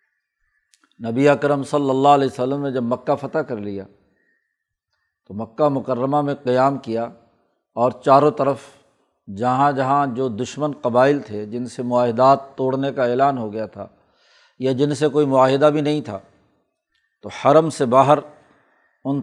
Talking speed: 155 wpm